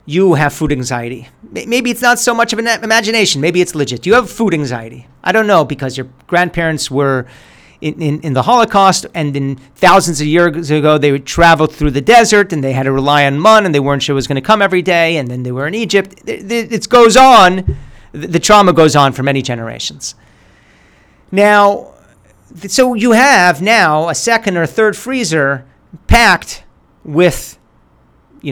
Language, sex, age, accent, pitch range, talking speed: English, male, 40-59, American, 145-200 Hz, 195 wpm